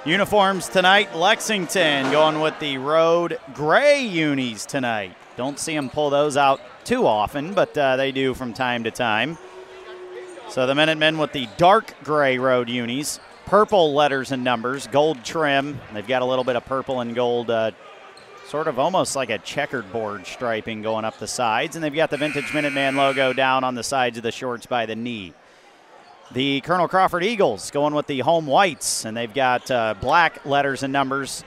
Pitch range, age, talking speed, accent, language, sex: 120-155 Hz, 40-59, 185 wpm, American, English, male